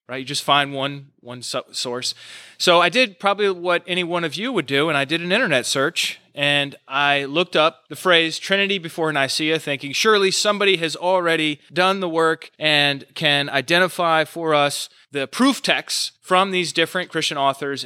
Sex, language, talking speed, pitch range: male, English, 180 wpm, 140-180 Hz